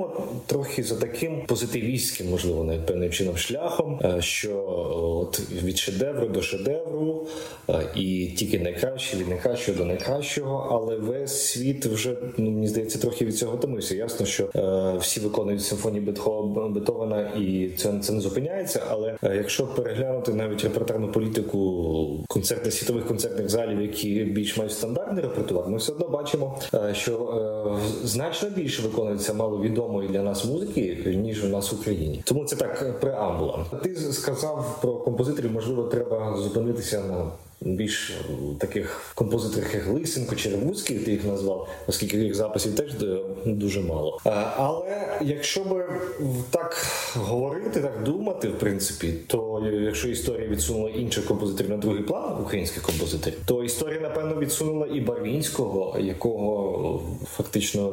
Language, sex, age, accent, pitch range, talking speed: Ukrainian, male, 30-49, native, 100-130 Hz, 135 wpm